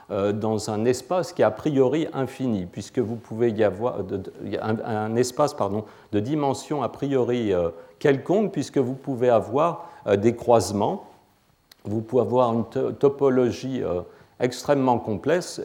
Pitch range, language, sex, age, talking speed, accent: 100-130 Hz, French, male, 40-59, 130 wpm, French